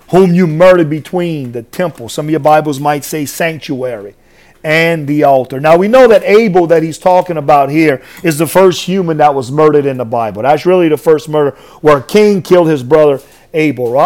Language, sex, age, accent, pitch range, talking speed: English, male, 40-59, American, 155-210 Hz, 205 wpm